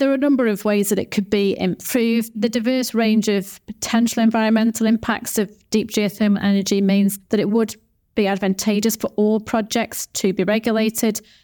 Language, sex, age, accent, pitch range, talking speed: English, female, 30-49, British, 195-220 Hz, 180 wpm